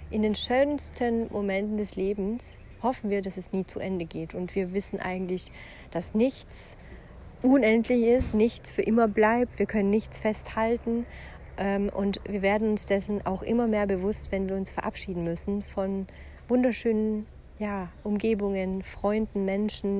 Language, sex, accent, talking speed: German, female, German, 145 wpm